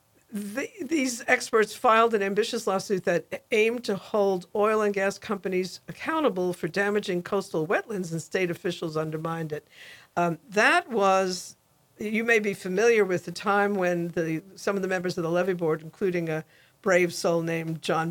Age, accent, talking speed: 60-79, American, 170 wpm